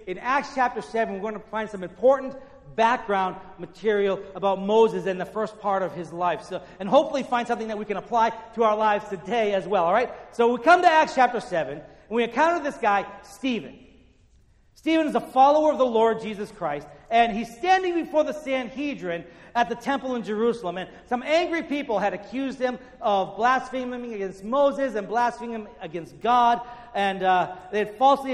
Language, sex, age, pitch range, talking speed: English, male, 40-59, 205-260 Hz, 195 wpm